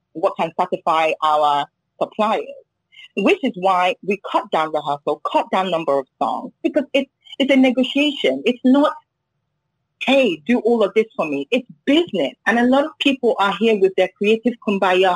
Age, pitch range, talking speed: 30-49, 180-255 Hz, 175 wpm